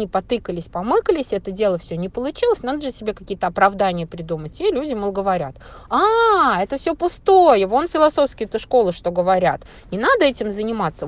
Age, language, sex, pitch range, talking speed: 20-39, Russian, female, 185-250 Hz, 160 wpm